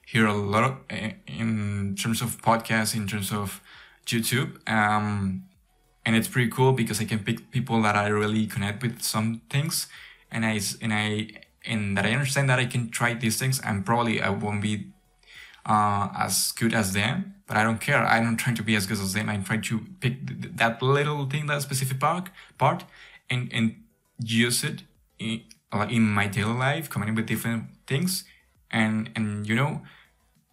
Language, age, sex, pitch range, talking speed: English, 20-39, male, 105-125 Hz, 190 wpm